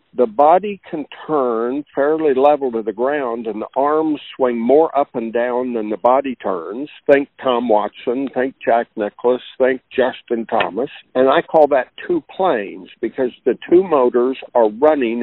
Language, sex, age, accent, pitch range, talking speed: English, male, 60-79, American, 120-155 Hz, 165 wpm